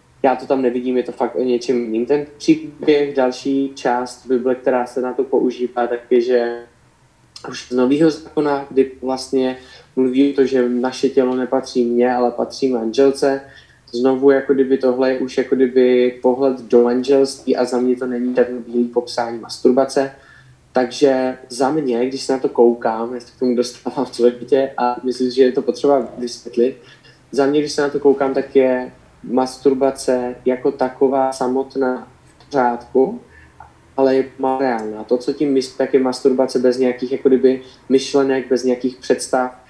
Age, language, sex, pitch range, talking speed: 20-39, Slovak, male, 125-135 Hz, 170 wpm